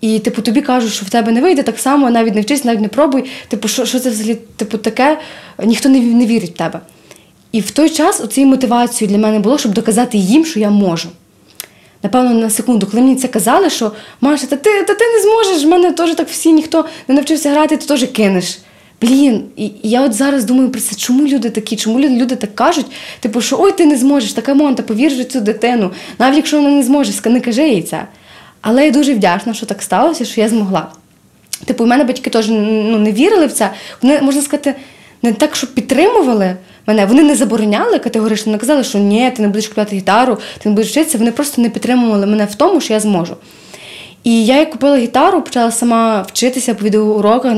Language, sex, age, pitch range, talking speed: Ukrainian, female, 20-39, 215-280 Hz, 215 wpm